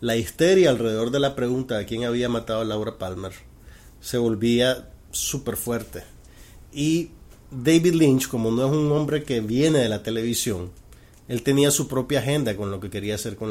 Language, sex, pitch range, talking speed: Spanish, male, 110-145 Hz, 180 wpm